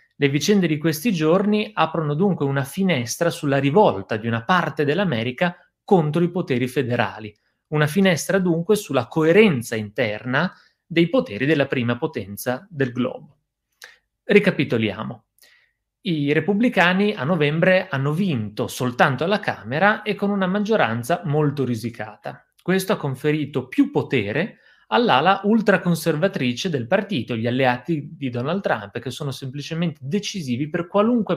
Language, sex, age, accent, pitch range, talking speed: Italian, male, 30-49, native, 125-185 Hz, 130 wpm